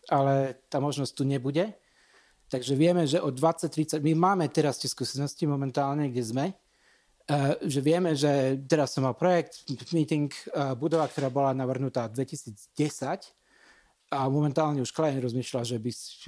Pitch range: 125-155 Hz